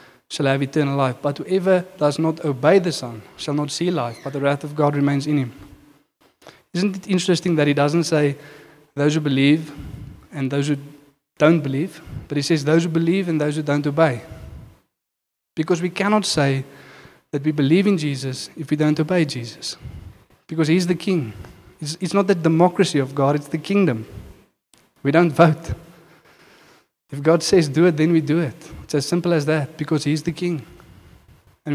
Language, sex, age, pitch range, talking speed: English, male, 20-39, 140-165 Hz, 185 wpm